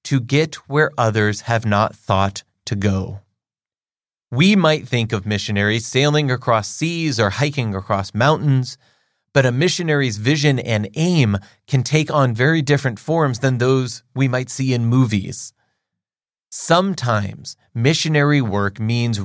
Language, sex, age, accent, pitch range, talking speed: English, male, 30-49, American, 110-145 Hz, 135 wpm